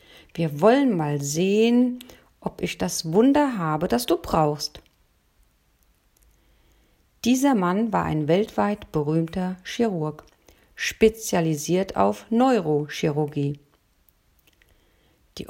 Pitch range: 150-210 Hz